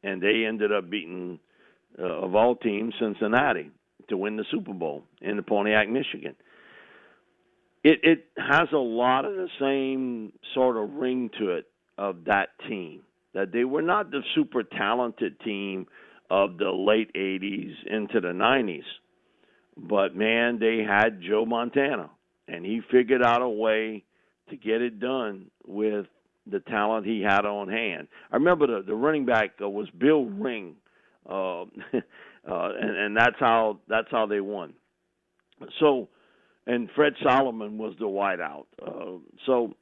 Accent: American